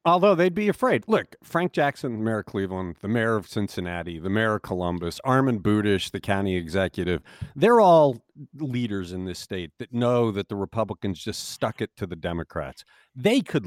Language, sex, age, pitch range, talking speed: English, male, 50-69, 100-160 Hz, 190 wpm